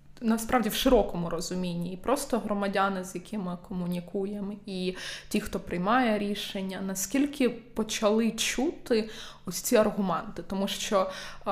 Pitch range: 185-220 Hz